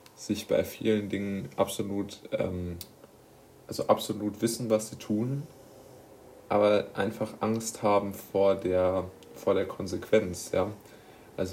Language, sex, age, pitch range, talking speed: German, male, 20-39, 95-105 Hz, 115 wpm